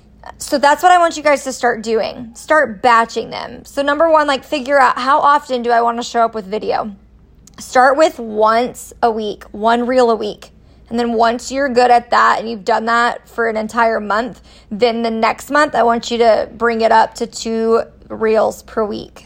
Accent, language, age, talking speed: American, English, 20-39, 215 wpm